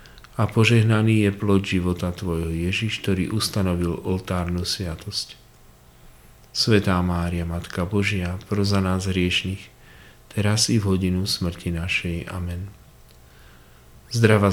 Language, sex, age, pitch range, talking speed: Slovak, male, 40-59, 90-110 Hz, 105 wpm